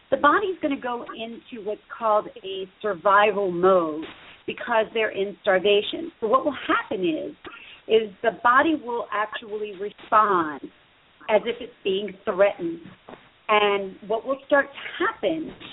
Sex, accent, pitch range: female, American, 200-275 Hz